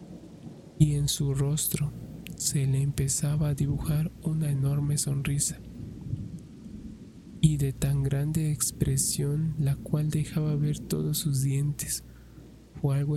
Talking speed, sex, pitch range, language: 120 wpm, male, 135-145 Hz, Spanish